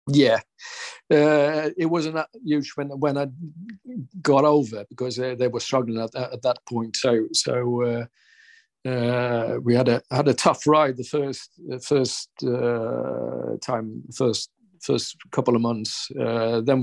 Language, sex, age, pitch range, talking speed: English, male, 50-69, 120-140 Hz, 160 wpm